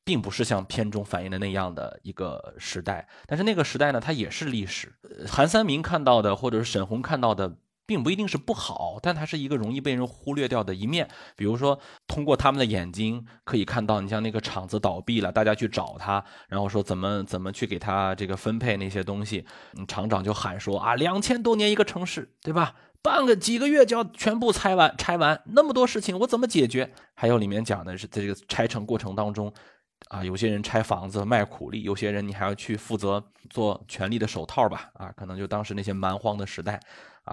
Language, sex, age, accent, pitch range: Chinese, male, 20-39, native, 100-125 Hz